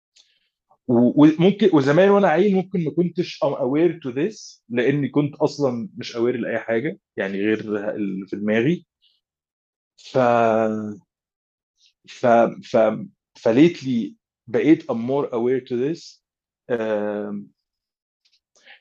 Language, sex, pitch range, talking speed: Arabic, male, 115-150 Hz, 105 wpm